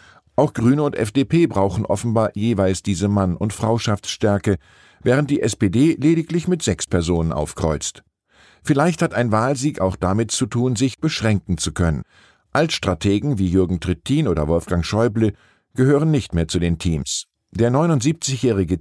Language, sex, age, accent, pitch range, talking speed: German, male, 50-69, German, 90-125 Hz, 145 wpm